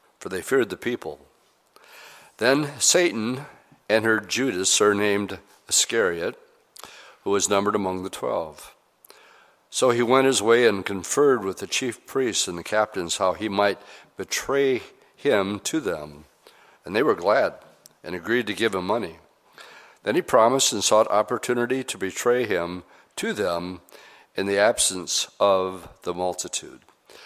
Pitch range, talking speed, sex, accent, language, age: 95-115 Hz, 145 wpm, male, American, English, 60-79